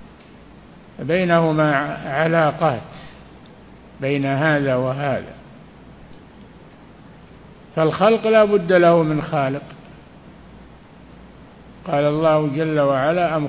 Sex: male